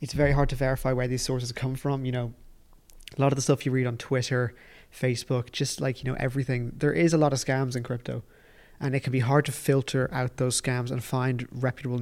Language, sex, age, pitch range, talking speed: English, male, 20-39, 125-135 Hz, 240 wpm